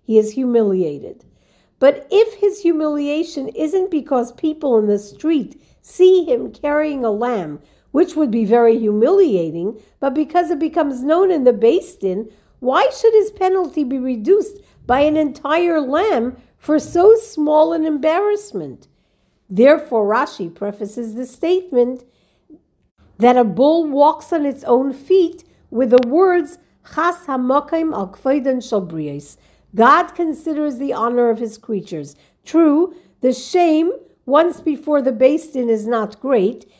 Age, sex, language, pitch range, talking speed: 50-69, female, English, 235-330 Hz, 130 wpm